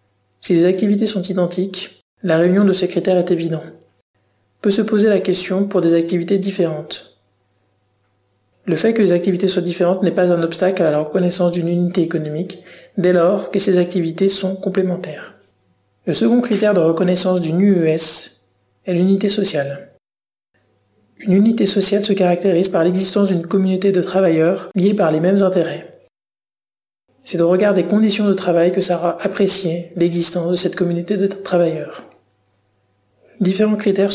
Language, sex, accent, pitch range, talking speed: French, male, French, 160-190 Hz, 160 wpm